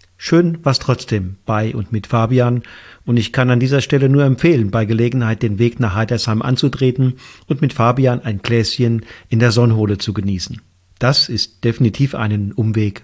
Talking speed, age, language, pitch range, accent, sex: 170 wpm, 50-69, German, 110-140 Hz, German, male